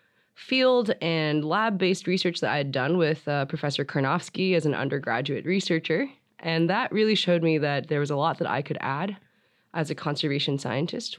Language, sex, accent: English, female, American